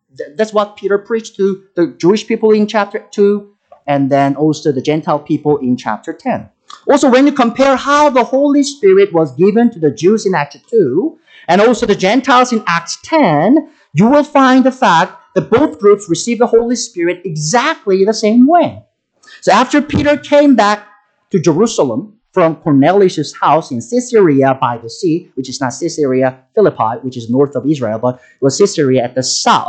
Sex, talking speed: male, 185 wpm